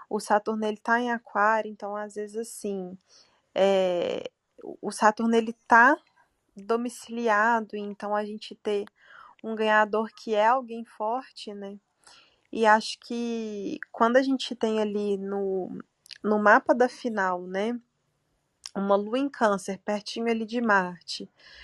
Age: 20-39